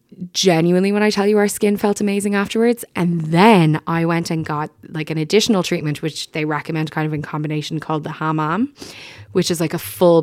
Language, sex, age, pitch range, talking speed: English, female, 20-39, 150-180 Hz, 205 wpm